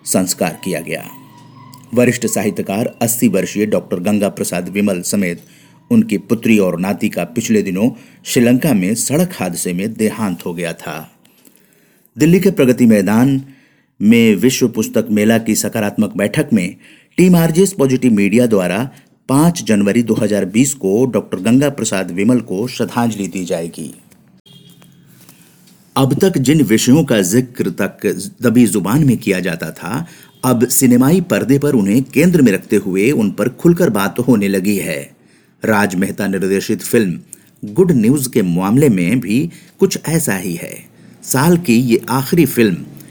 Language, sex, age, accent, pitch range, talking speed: Hindi, male, 50-69, native, 110-160 Hz, 145 wpm